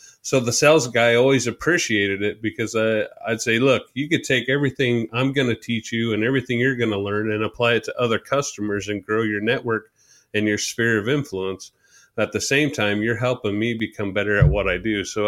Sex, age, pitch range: male, 30-49, 105-120 Hz